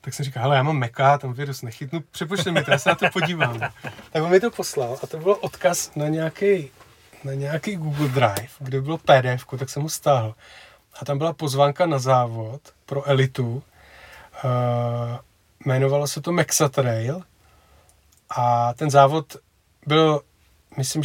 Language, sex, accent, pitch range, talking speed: Czech, male, native, 130-150 Hz, 165 wpm